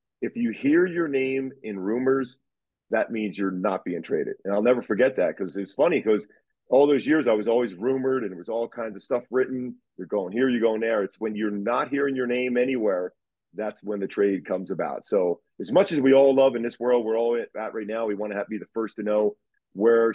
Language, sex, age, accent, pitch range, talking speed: English, male, 40-59, American, 105-125 Hz, 245 wpm